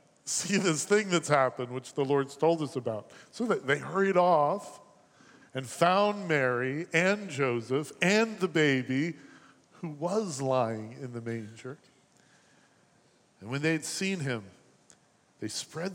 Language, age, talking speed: English, 50-69, 145 wpm